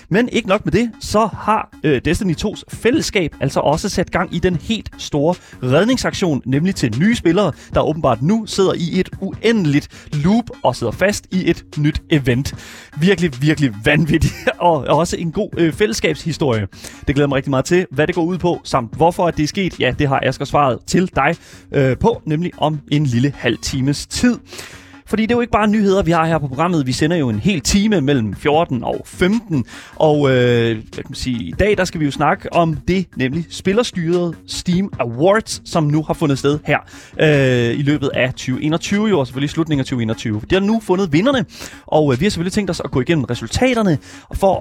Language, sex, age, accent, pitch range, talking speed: Danish, male, 30-49, native, 130-180 Hz, 205 wpm